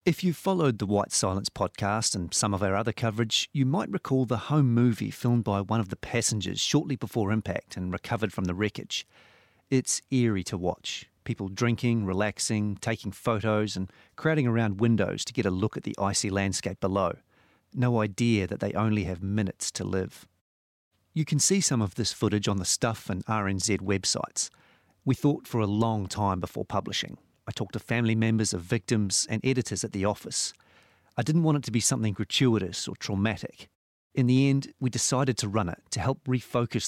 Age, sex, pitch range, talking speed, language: 40-59, male, 100-125 Hz, 190 wpm, English